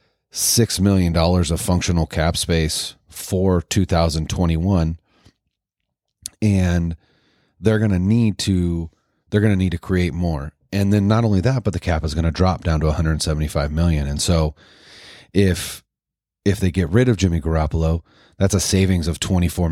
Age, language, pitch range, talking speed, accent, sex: 30-49, English, 80-95 Hz, 160 wpm, American, male